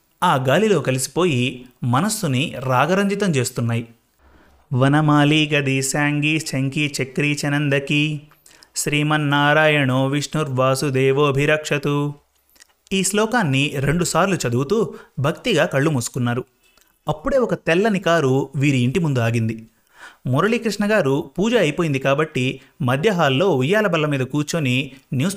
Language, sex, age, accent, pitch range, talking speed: Telugu, male, 30-49, native, 135-175 Hz, 95 wpm